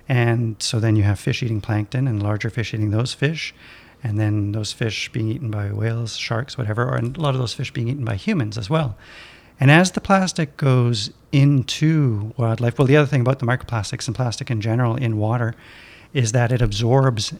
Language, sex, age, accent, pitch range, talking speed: English, male, 40-59, American, 115-130 Hz, 205 wpm